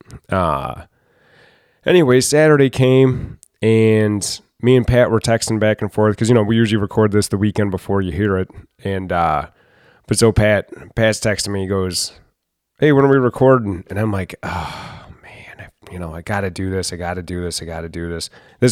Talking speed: 205 wpm